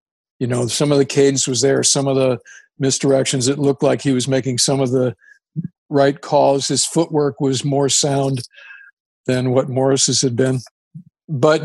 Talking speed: 175 wpm